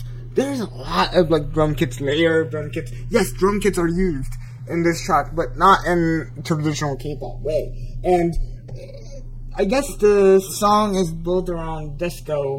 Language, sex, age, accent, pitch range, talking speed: English, male, 20-39, American, 125-185 Hz, 155 wpm